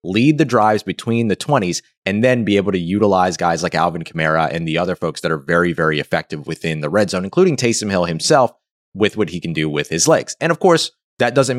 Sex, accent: male, American